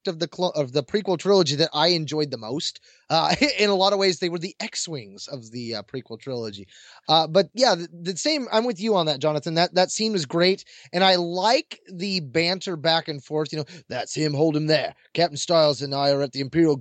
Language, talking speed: English, 240 wpm